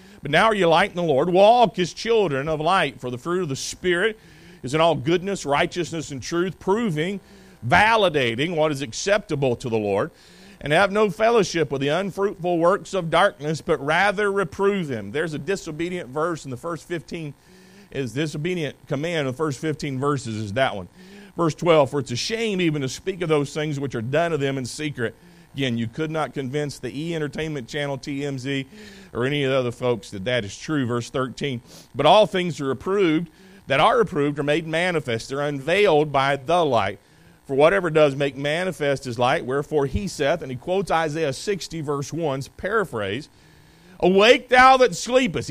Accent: American